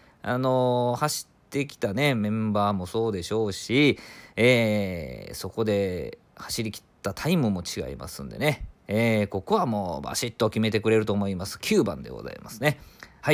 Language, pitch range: Japanese, 100-130 Hz